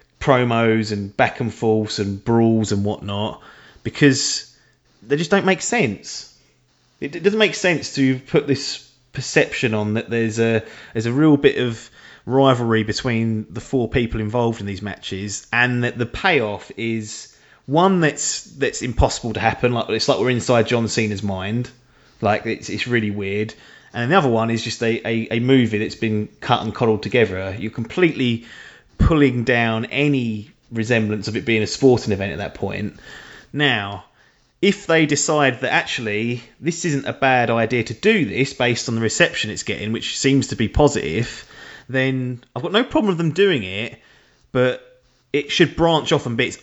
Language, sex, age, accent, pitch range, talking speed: English, male, 30-49, British, 110-140 Hz, 180 wpm